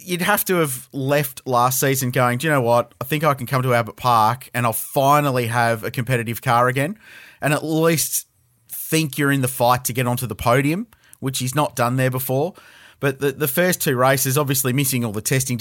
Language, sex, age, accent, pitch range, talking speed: English, male, 30-49, Australian, 120-135 Hz, 225 wpm